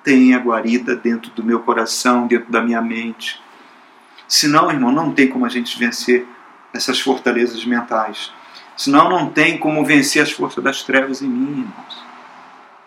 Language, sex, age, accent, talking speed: Portuguese, male, 50-69, Brazilian, 155 wpm